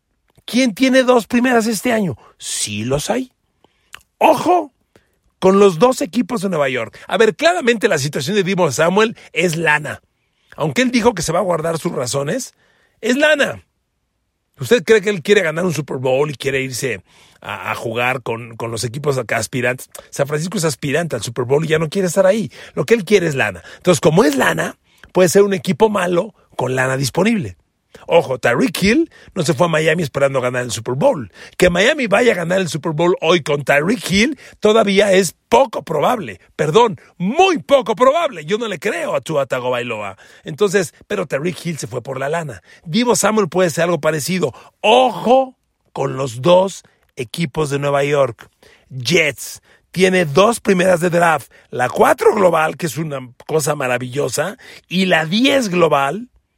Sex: male